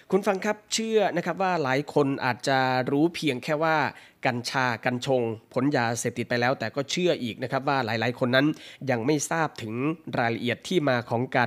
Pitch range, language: 125-155 Hz, Thai